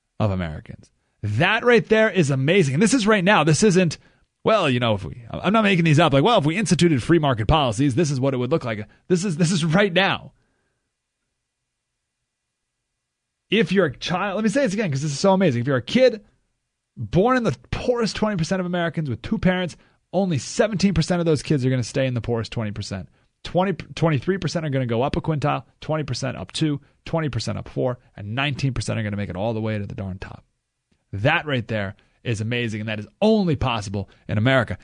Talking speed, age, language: 215 wpm, 30-49, English